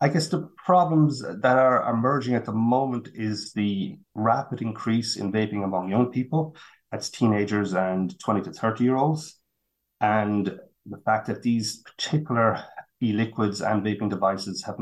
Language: English